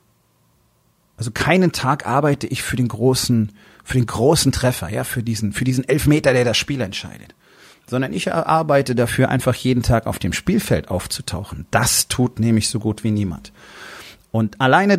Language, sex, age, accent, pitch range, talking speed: German, male, 40-59, German, 110-135 Hz, 170 wpm